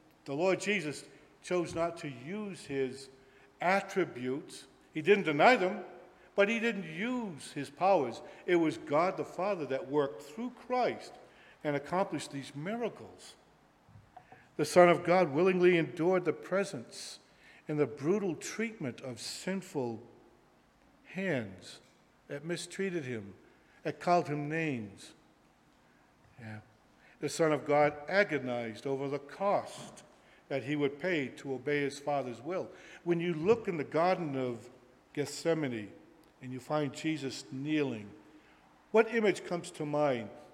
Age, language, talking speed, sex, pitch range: 50-69, English, 130 wpm, male, 135-180 Hz